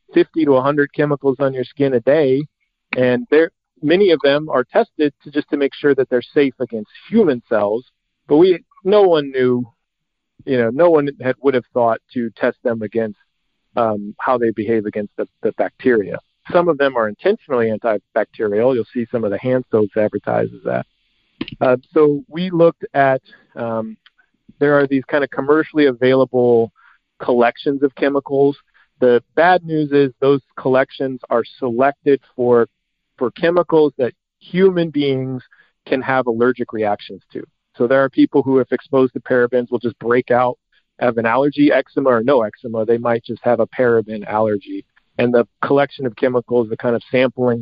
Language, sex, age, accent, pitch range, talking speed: English, male, 50-69, American, 115-140 Hz, 175 wpm